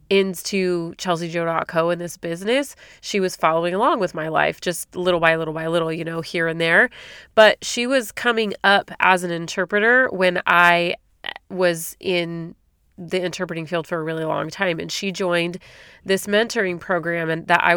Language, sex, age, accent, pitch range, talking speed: English, female, 30-49, American, 170-195 Hz, 170 wpm